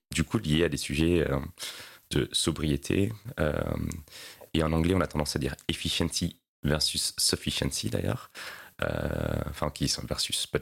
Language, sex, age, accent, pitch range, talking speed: French, male, 30-49, French, 70-85 Hz, 135 wpm